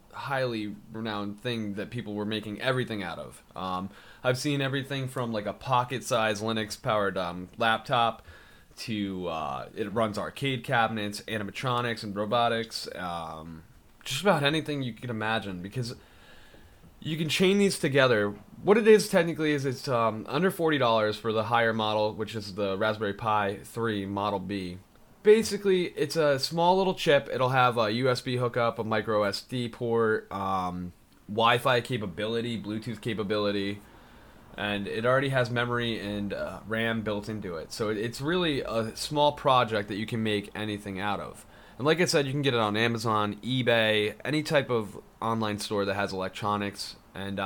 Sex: male